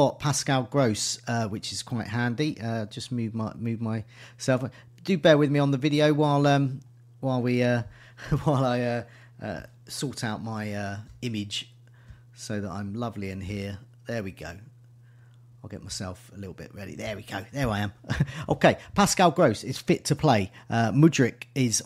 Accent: British